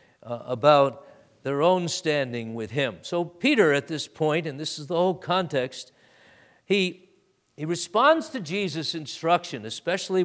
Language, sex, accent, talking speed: English, male, American, 145 wpm